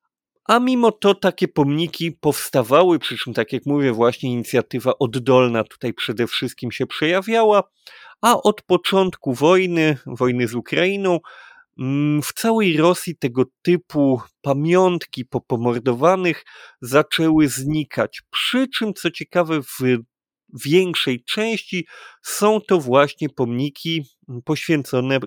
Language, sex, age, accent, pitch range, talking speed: Polish, male, 30-49, native, 125-180 Hz, 110 wpm